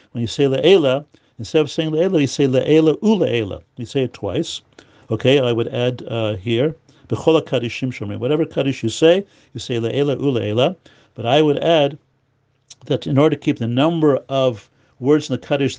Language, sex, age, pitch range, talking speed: English, male, 50-69, 115-145 Hz, 175 wpm